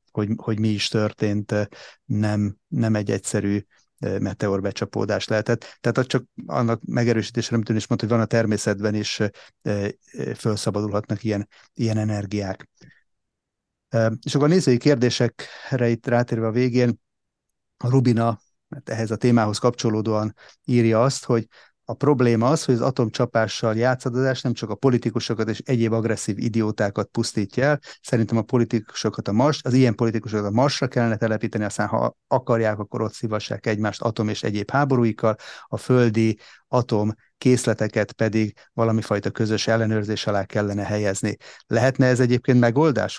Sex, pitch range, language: male, 105-120 Hz, Hungarian